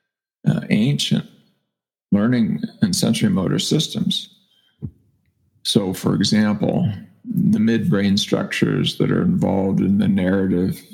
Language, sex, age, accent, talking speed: English, male, 40-59, American, 105 wpm